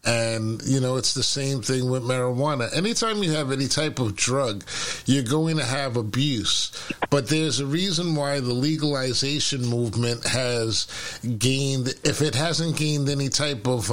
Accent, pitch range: American, 125-155 Hz